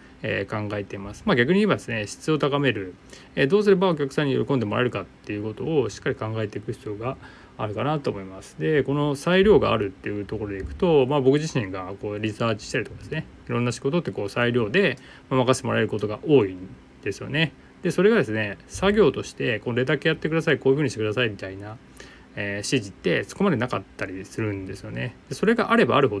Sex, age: male, 20-39